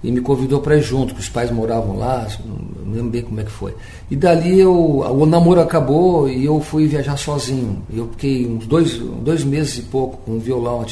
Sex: male